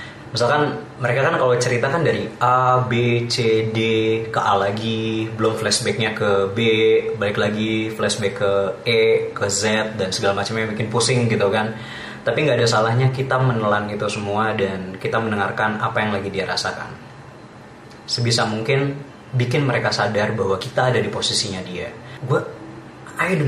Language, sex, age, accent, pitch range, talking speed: English, male, 20-39, Indonesian, 105-125 Hz, 160 wpm